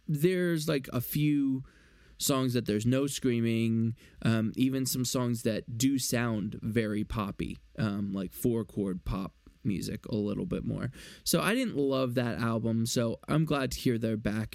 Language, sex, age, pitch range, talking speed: English, male, 20-39, 110-140 Hz, 165 wpm